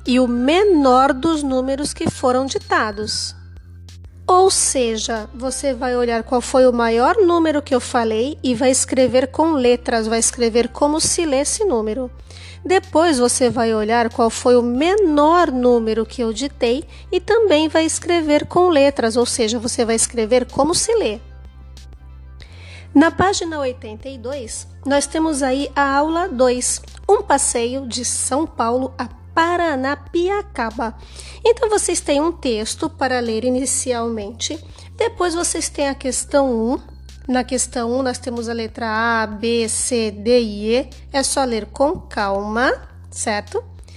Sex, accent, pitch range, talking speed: female, Brazilian, 230-300 Hz, 145 wpm